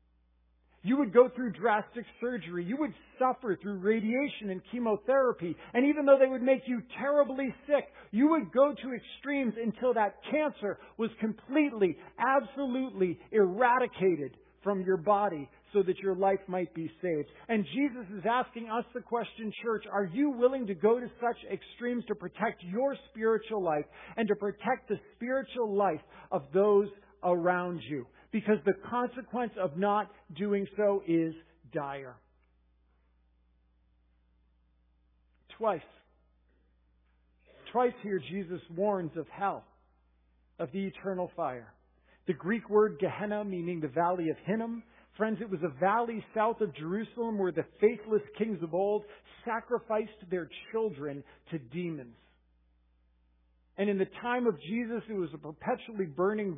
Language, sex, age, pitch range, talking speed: English, male, 50-69, 160-230 Hz, 140 wpm